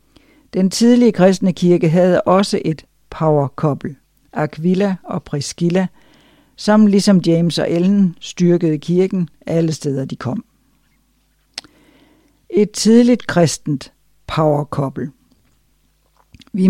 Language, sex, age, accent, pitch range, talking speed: Danish, female, 60-79, native, 155-185 Hz, 95 wpm